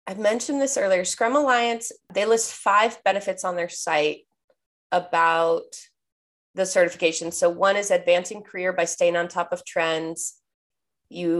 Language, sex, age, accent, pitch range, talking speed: English, female, 20-39, American, 165-200 Hz, 145 wpm